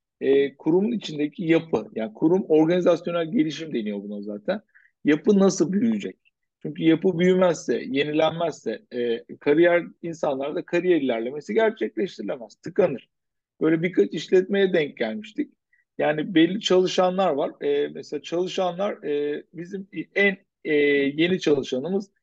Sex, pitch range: male, 145-195 Hz